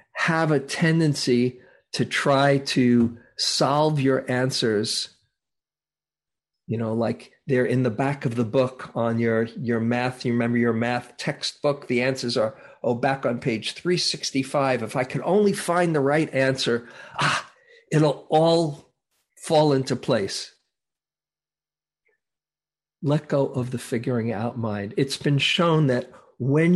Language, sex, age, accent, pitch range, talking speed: English, male, 50-69, American, 120-145 Hz, 140 wpm